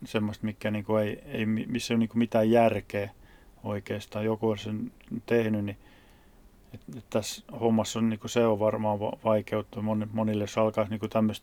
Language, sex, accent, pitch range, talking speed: Finnish, male, native, 105-115 Hz, 165 wpm